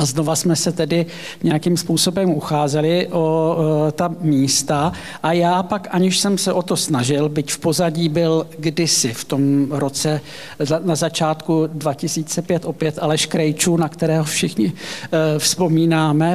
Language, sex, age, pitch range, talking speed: Czech, male, 50-69, 155-170 Hz, 145 wpm